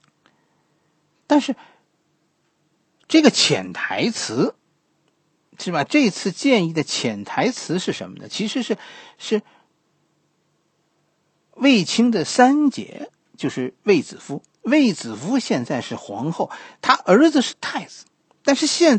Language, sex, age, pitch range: Chinese, male, 50-69, 165-275 Hz